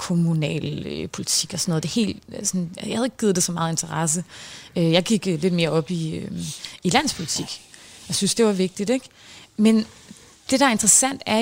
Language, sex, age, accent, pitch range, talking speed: Danish, female, 30-49, native, 185-245 Hz, 200 wpm